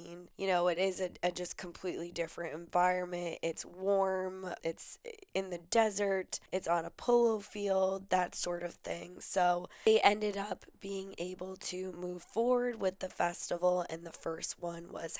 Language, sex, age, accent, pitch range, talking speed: English, female, 10-29, American, 175-200 Hz, 165 wpm